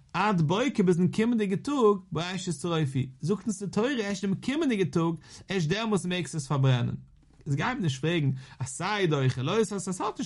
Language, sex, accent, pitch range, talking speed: English, male, German, 135-195 Hz, 180 wpm